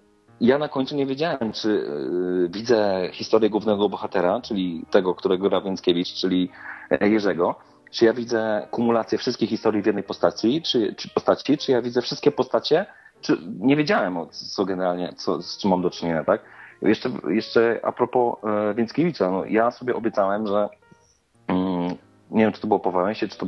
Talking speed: 175 wpm